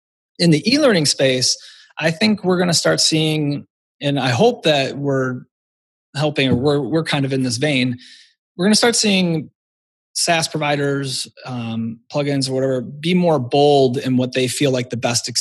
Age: 30-49